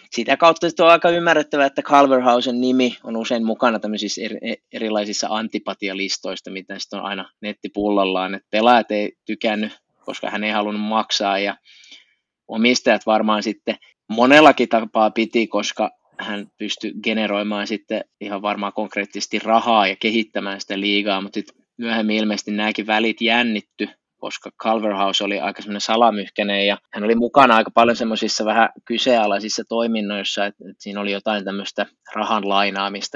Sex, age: male, 20-39